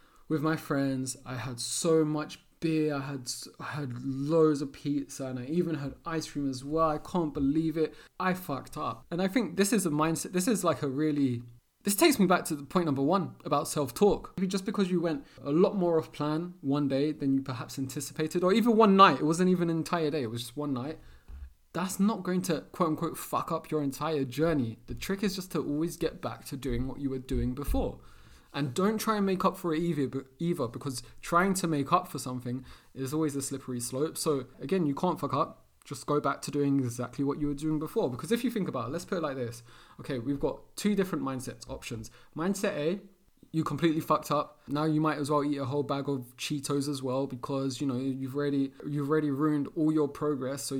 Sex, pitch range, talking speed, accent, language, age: male, 135-165 Hz, 235 wpm, British, English, 20-39